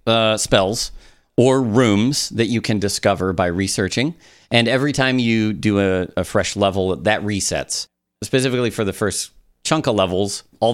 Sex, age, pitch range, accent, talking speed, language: male, 30-49, 90-115 Hz, American, 160 wpm, English